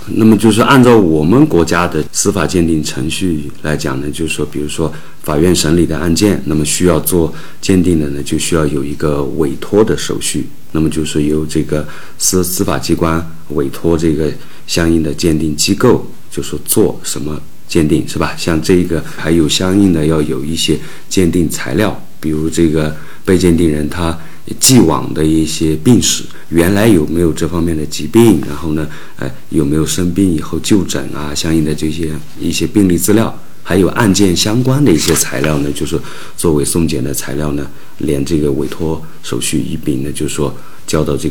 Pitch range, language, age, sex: 75-90 Hz, Chinese, 50-69, male